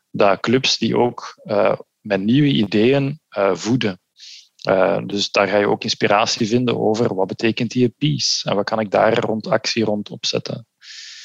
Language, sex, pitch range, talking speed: Dutch, male, 105-130 Hz, 170 wpm